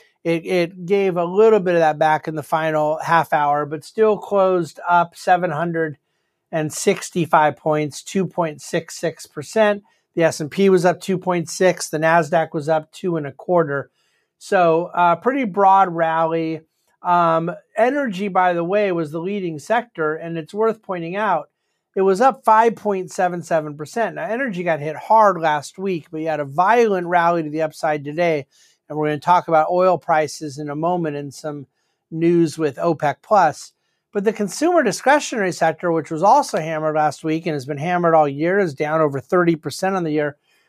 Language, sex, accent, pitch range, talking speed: English, male, American, 160-200 Hz, 170 wpm